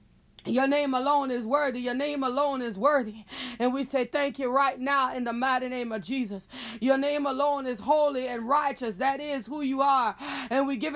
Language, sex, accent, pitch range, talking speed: English, female, American, 275-335 Hz, 210 wpm